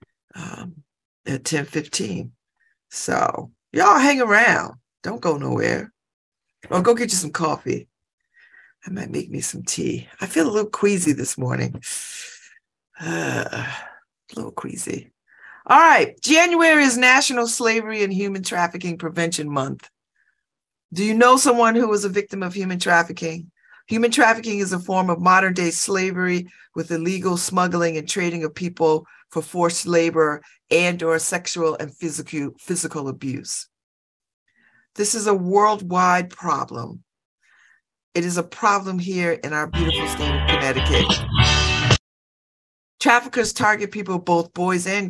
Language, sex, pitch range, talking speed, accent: English, female, 155-200 Hz, 135 wpm, American